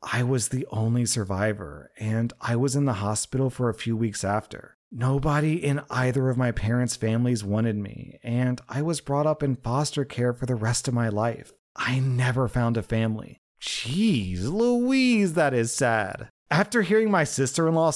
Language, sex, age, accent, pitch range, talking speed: English, male, 30-49, American, 120-170 Hz, 175 wpm